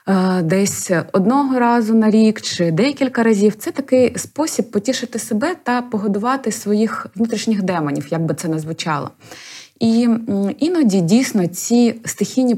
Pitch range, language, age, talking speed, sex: 190-240 Hz, Ukrainian, 20-39, 130 wpm, female